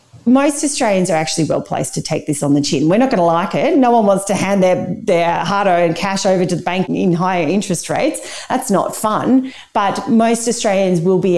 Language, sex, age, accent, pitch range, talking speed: English, female, 40-59, Australian, 165-205 Hz, 220 wpm